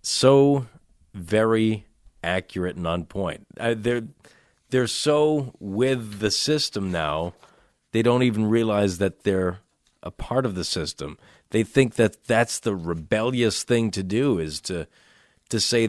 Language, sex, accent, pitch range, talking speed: English, male, American, 95-115 Hz, 145 wpm